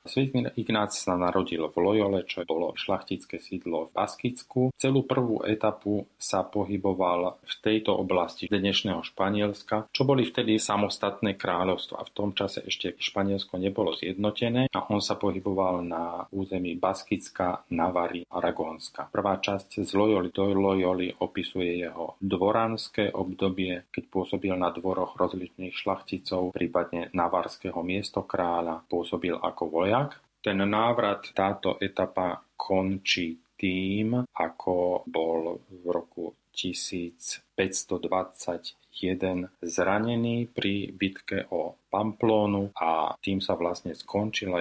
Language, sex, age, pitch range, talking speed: Slovak, male, 40-59, 90-105 Hz, 115 wpm